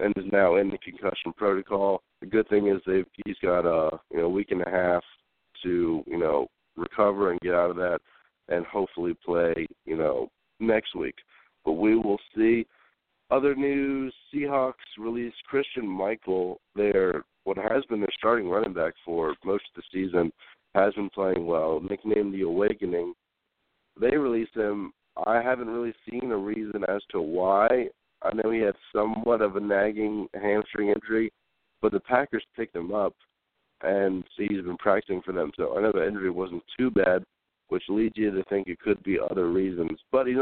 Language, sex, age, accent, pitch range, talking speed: English, male, 50-69, American, 90-115 Hz, 180 wpm